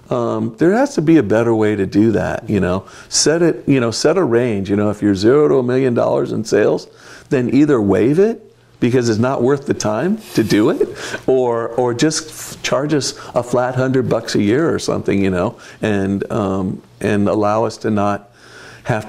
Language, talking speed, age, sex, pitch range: English, 210 wpm, 50-69, male, 105-135 Hz